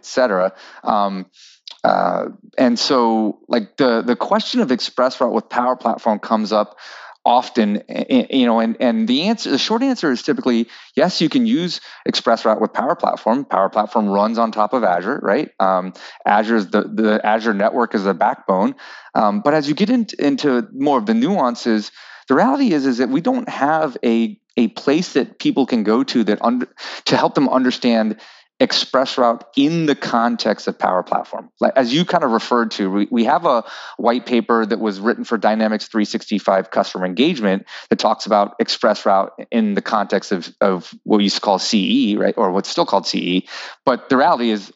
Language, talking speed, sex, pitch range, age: English, 190 wpm, male, 105-160 Hz, 30-49